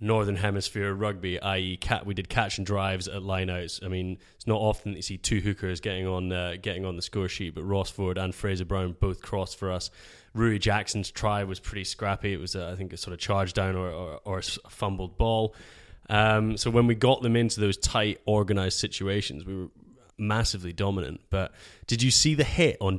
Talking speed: 215 wpm